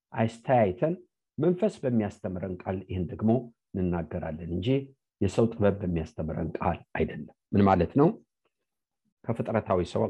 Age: 50-69